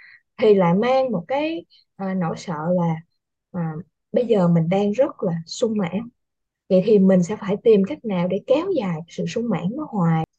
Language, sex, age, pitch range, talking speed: Vietnamese, female, 20-39, 180-255 Hz, 185 wpm